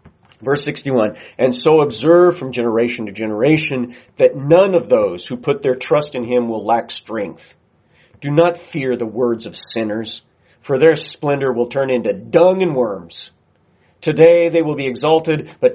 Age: 40-59